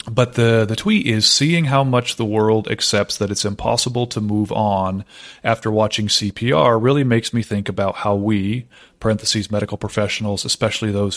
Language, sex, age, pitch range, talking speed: English, male, 30-49, 105-120 Hz, 170 wpm